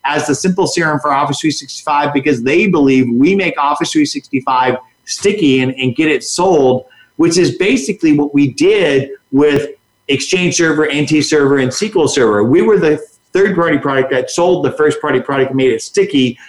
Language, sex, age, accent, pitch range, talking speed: English, male, 40-59, American, 130-170 Hz, 175 wpm